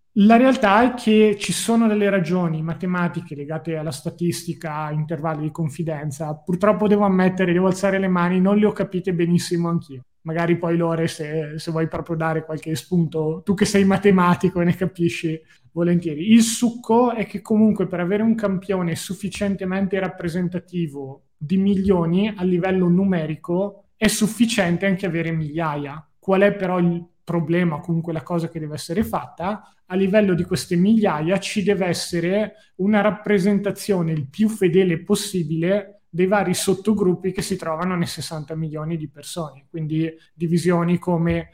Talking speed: 155 wpm